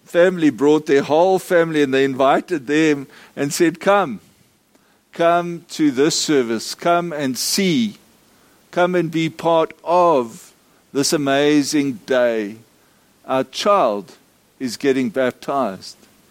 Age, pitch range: 60-79, 135-170 Hz